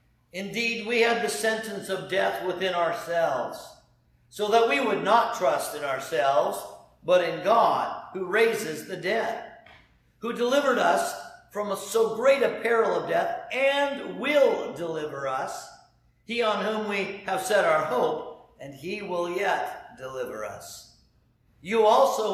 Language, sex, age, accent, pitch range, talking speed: English, male, 50-69, American, 180-215 Hz, 145 wpm